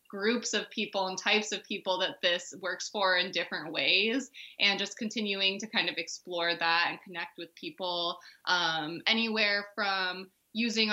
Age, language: 20-39, English